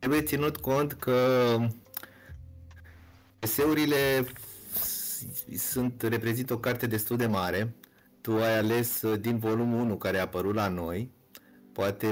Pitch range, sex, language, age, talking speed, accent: 105-135 Hz, male, Romanian, 30-49, 120 wpm, native